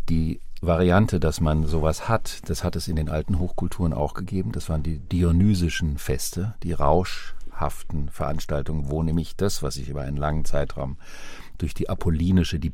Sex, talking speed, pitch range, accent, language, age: male, 170 wpm, 80-95 Hz, German, German, 50-69